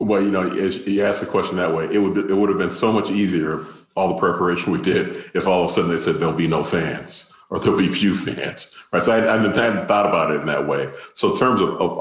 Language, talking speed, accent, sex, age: English, 290 wpm, American, male, 40-59